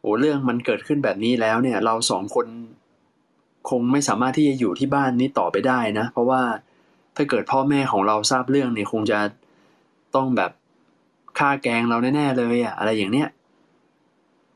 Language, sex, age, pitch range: Thai, male, 20-39, 115-140 Hz